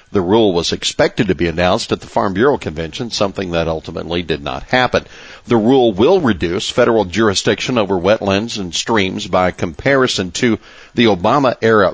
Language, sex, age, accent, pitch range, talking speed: English, male, 60-79, American, 95-115 Hz, 165 wpm